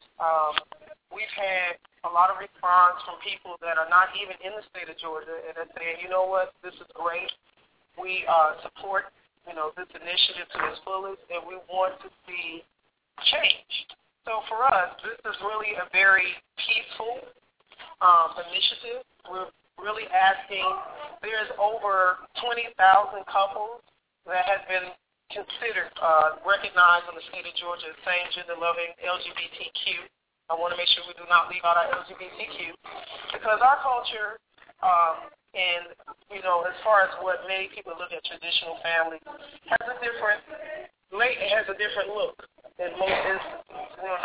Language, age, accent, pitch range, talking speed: English, 30-49, American, 175-210 Hz, 160 wpm